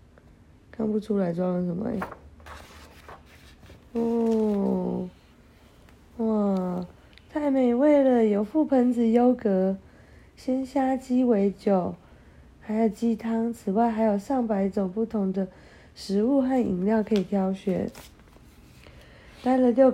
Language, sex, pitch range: Chinese, female, 180-235 Hz